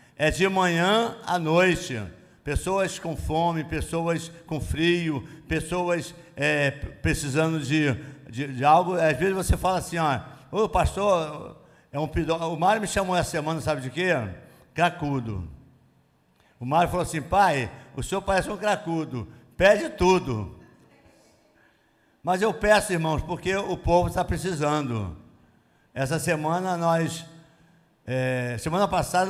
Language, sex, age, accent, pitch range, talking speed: Portuguese, male, 60-79, Brazilian, 140-180 Hz, 130 wpm